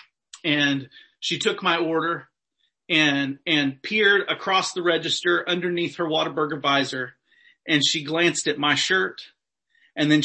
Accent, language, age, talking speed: American, English, 40-59, 135 wpm